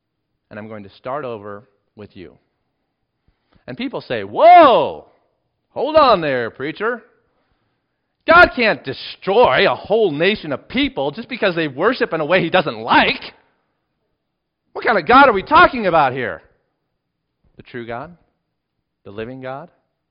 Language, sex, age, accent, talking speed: English, male, 40-59, American, 145 wpm